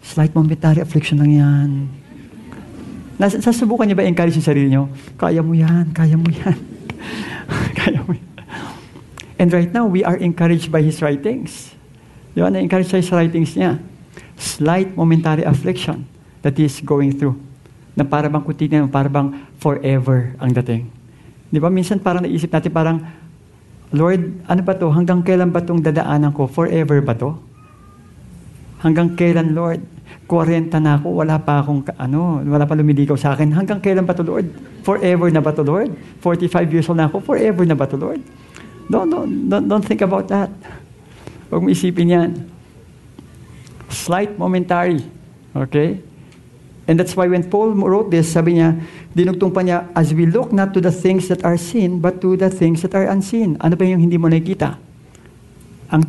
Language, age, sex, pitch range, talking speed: English, 50-69, male, 145-180 Hz, 165 wpm